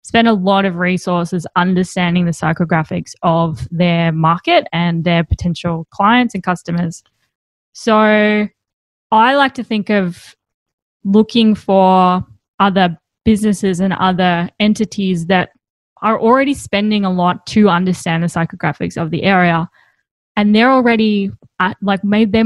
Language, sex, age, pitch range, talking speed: English, female, 10-29, 175-215 Hz, 130 wpm